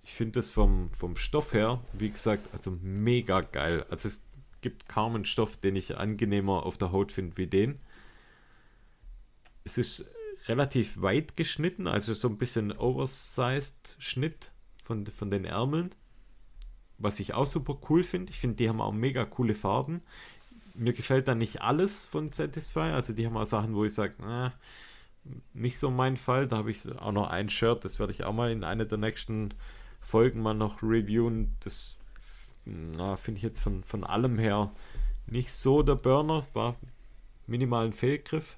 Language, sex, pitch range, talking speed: German, male, 100-125 Hz, 175 wpm